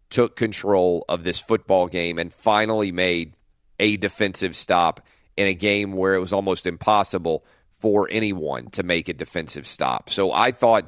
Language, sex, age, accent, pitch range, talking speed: English, male, 40-59, American, 90-115 Hz, 165 wpm